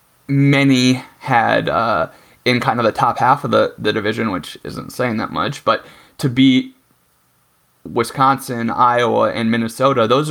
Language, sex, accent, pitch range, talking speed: English, male, American, 115-135 Hz, 150 wpm